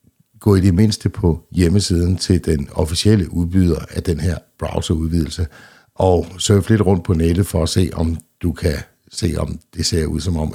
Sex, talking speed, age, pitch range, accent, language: male, 190 wpm, 60-79, 80-90 Hz, native, Danish